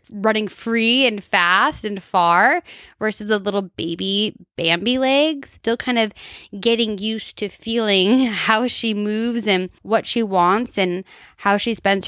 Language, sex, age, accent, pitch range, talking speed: English, female, 10-29, American, 185-230 Hz, 150 wpm